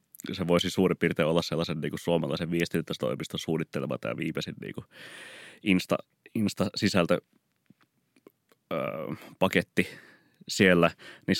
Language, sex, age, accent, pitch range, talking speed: Finnish, male, 30-49, native, 85-100 Hz, 110 wpm